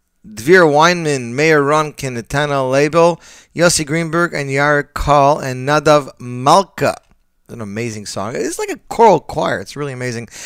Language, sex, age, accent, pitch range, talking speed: English, male, 30-49, American, 125-175 Hz, 145 wpm